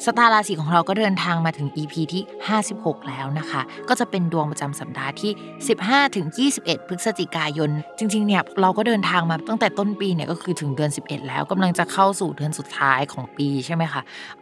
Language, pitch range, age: Thai, 150-195 Hz, 20-39